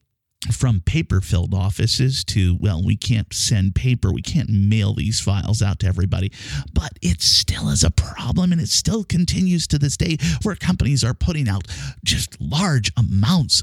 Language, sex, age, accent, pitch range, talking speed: English, male, 50-69, American, 95-140 Hz, 165 wpm